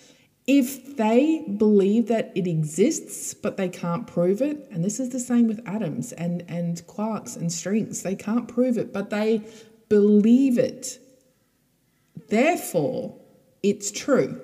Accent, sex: Australian, female